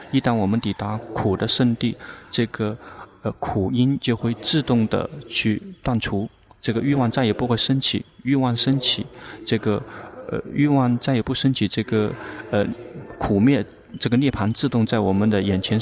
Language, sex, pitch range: Chinese, male, 105-130 Hz